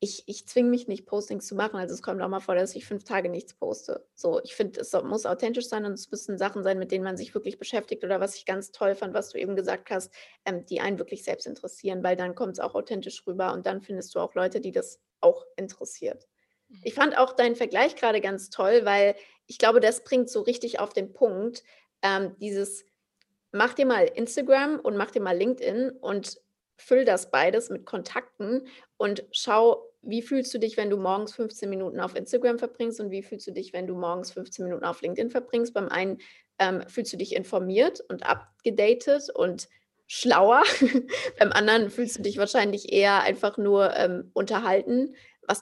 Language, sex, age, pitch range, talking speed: German, female, 30-49, 195-250 Hz, 205 wpm